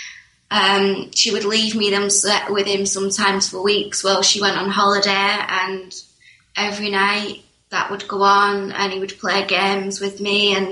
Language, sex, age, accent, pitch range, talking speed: English, female, 20-39, British, 185-210 Hz, 180 wpm